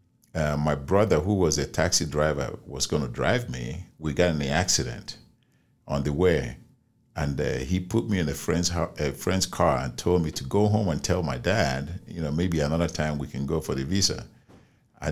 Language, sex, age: English, male, 50-69